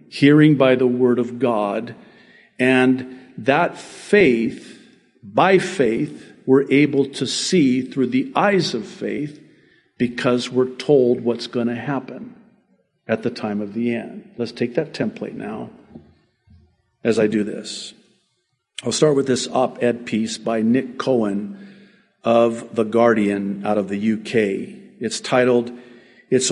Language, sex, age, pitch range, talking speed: English, male, 50-69, 120-160 Hz, 140 wpm